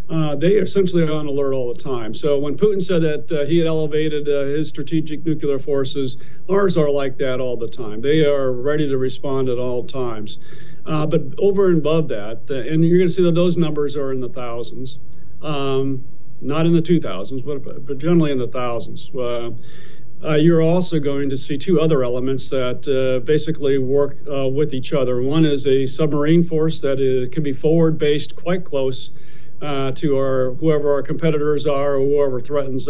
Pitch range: 135-155 Hz